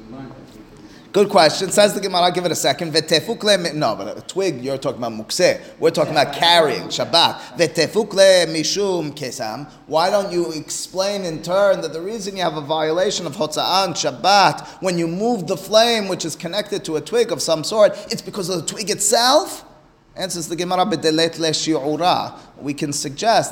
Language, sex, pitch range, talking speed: English, male, 145-185 Hz, 165 wpm